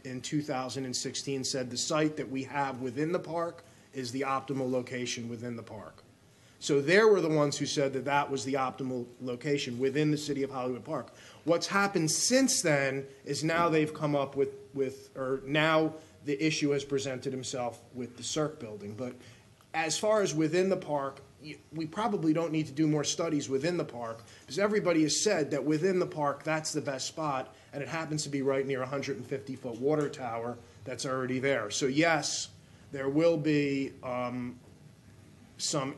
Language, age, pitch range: English, 30-49, 130-155 Hz